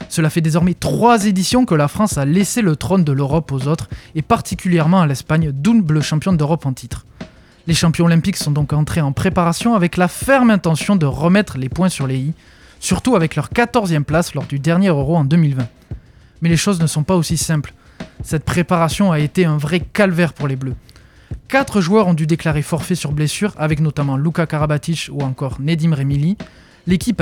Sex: male